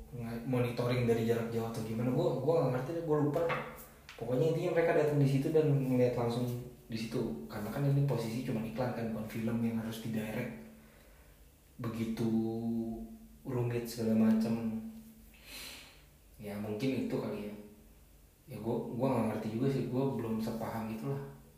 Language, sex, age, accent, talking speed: Indonesian, male, 20-39, native, 160 wpm